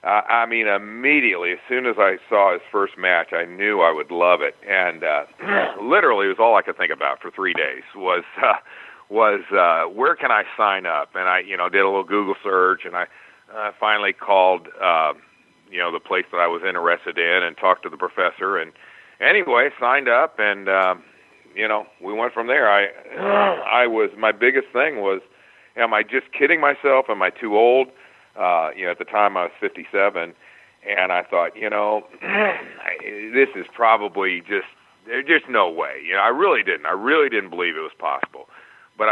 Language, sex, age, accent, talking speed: English, male, 50-69, American, 205 wpm